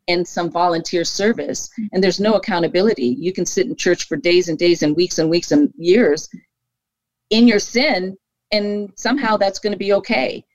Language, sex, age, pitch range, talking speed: English, female, 50-69, 160-200 Hz, 190 wpm